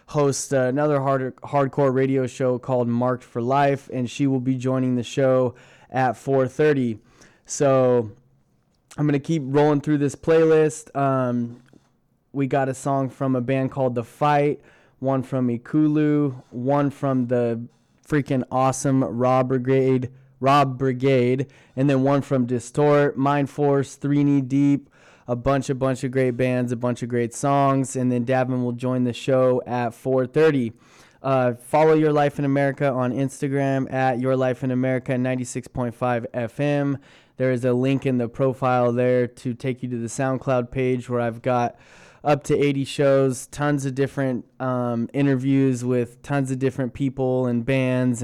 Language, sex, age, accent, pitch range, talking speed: English, male, 20-39, American, 125-140 Hz, 160 wpm